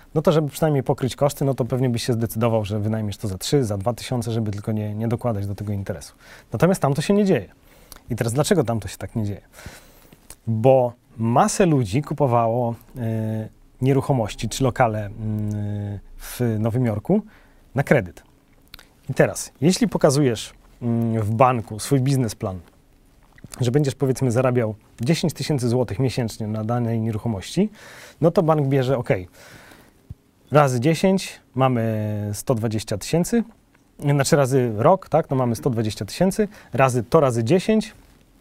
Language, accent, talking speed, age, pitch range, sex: Polish, native, 155 wpm, 30-49, 110-150 Hz, male